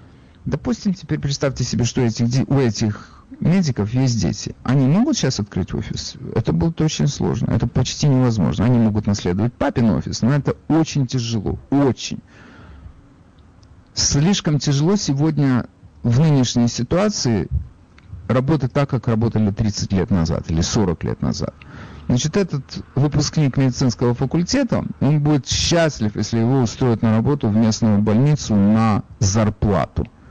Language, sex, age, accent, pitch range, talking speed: Russian, male, 50-69, native, 110-150 Hz, 135 wpm